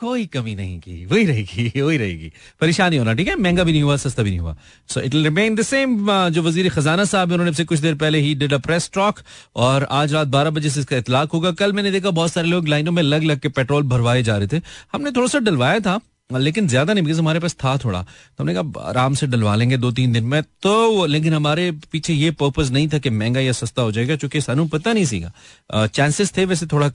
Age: 30-49